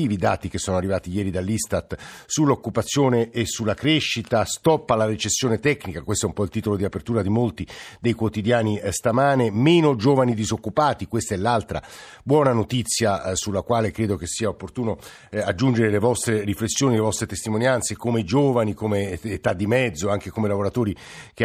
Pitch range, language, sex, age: 100-115 Hz, Italian, male, 50-69